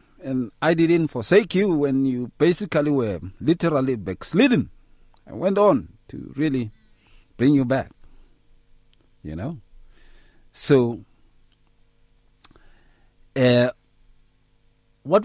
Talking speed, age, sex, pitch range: 95 wpm, 50-69, male, 100-125 Hz